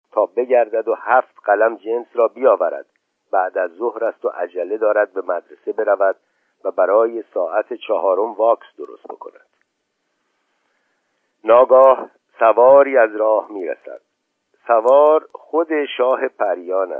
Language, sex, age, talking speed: Persian, male, 50-69, 120 wpm